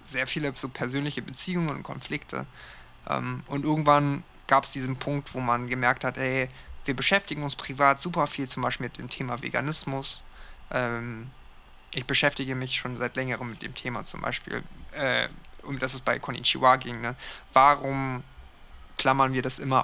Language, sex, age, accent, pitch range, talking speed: German, male, 20-39, German, 125-140 Hz, 155 wpm